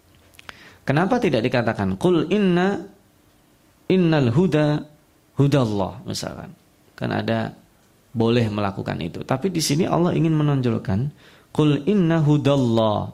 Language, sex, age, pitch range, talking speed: Indonesian, male, 20-39, 115-155 Hz, 115 wpm